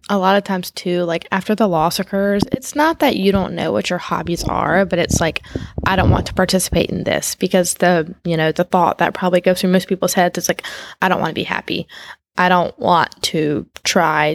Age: 10-29